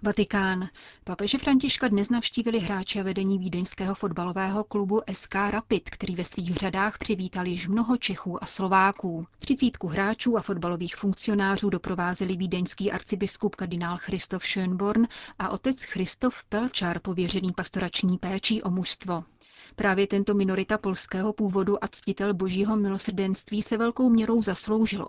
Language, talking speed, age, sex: Czech, 130 wpm, 30-49, female